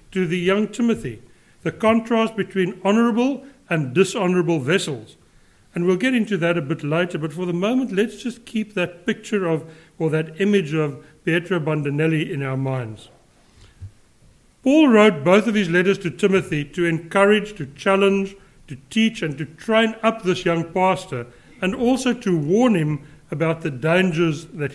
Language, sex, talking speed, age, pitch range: English, male, 165 wpm, 60-79, 145-195 Hz